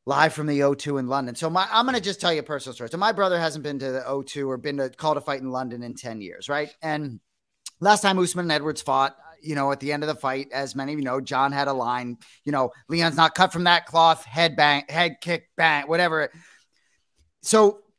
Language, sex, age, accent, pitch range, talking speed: English, male, 30-49, American, 145-185 Hz, 245 wpm